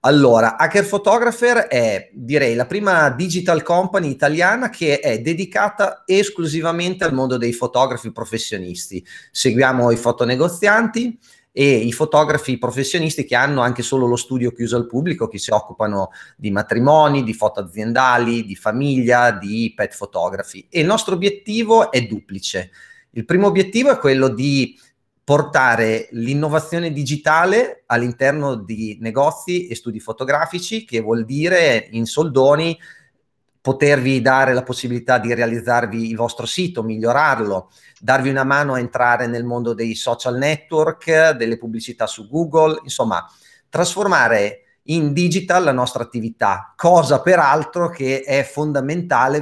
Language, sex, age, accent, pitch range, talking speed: Italian, male, 30-49, native, 120-170 Hz, 130 wpm